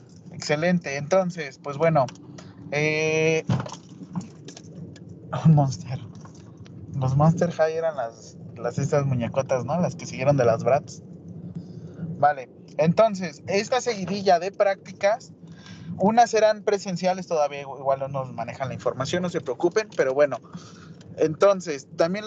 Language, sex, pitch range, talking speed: Spanish, male, 145-180 Hz, 120 wpm